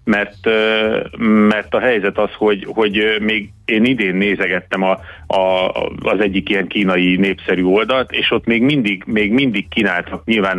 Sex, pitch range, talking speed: male, 90-105 Hz, 155 wpm